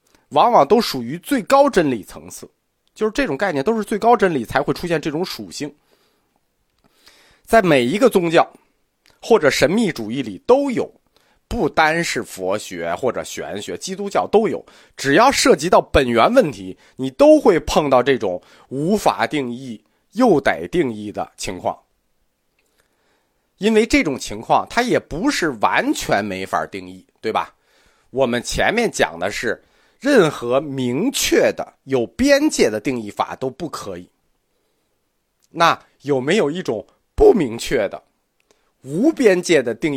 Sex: male